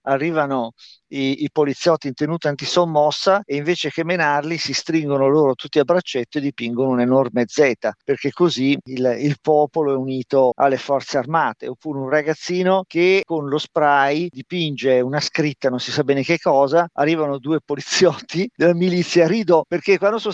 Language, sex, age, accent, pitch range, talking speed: Italian, male, 50-69, native, 135-175 Hz, 165 wpm